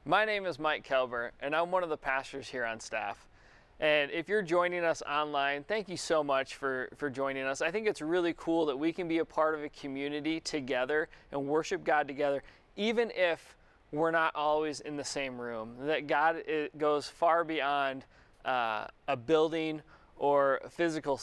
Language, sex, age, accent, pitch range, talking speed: English, male, 20-39, American, 140-170 Hz, 185 wpm